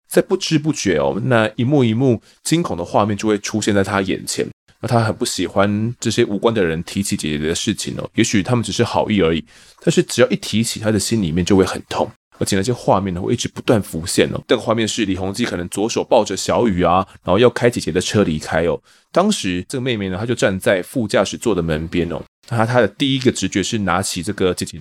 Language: Chinese